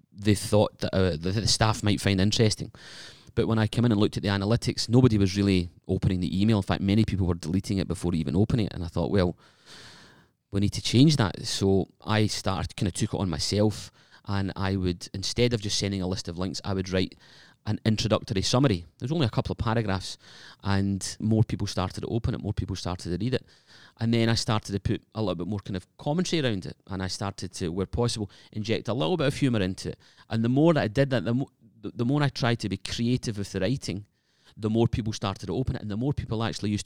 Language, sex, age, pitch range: English, male, 30-49, 95-115 Hz